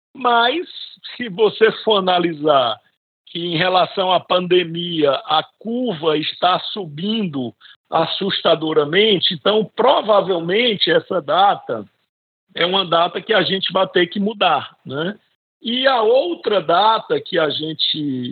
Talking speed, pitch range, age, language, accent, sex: 120 wpm, 155-220 Hz, 60-79, Portuguese, Brazilian, male